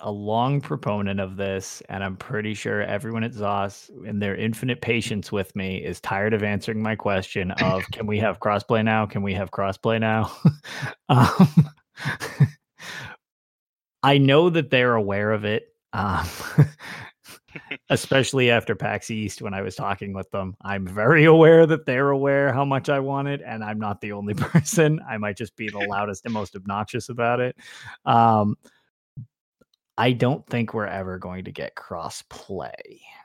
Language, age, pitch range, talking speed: English, 20-39, 100-130 Hz, 170 wpm